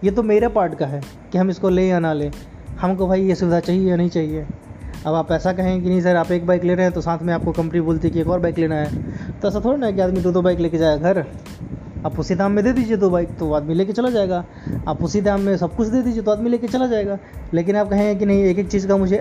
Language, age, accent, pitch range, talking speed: Hindi, 20-39, native, 160-195 Hz, 295 wpm